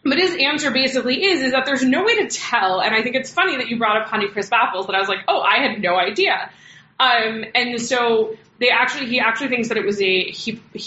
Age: 20-39